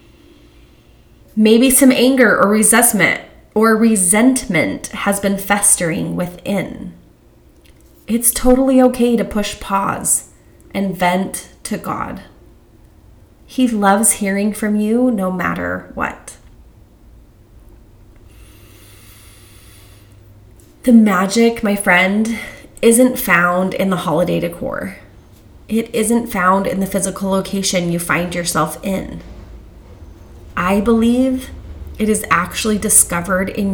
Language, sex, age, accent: English, female, 30-49, American